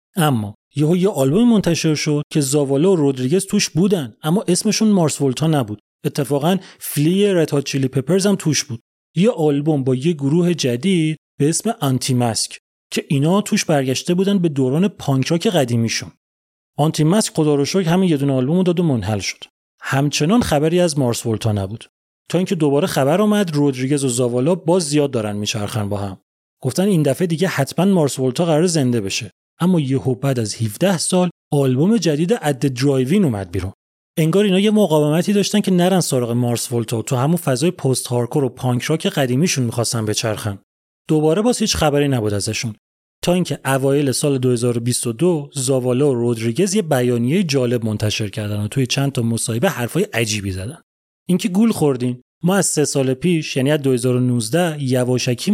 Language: Persian